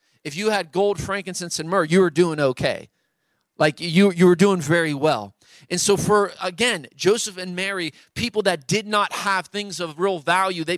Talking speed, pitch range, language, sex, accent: 190 wpm, 165-195 Hz, English, male, American